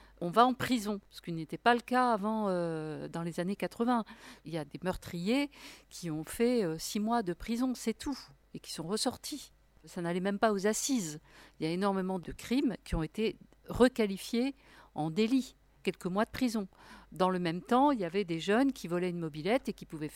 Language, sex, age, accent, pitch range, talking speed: French, female, 50-69, French, 175-230 Hz, 215 wpm